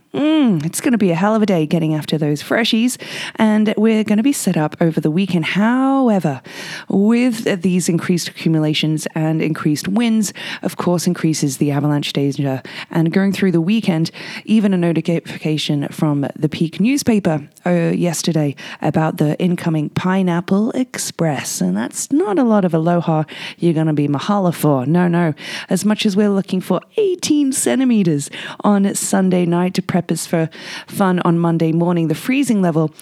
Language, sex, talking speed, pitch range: English, female, 170 wpm, 155-195 Hz